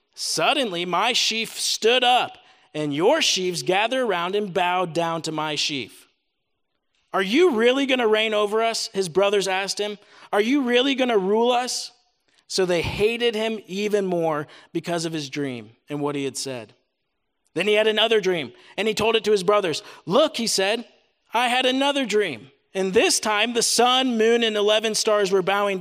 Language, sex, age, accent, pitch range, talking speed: English, male, 40-59, American, 175-220 Hz, 185 wpm